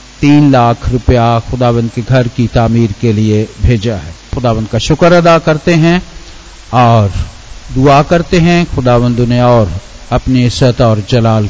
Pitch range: 105-140 Hz